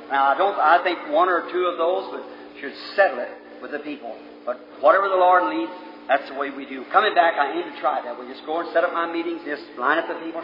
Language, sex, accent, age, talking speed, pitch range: English, male, American, 50-69, 270 wpm, 125-165 Hz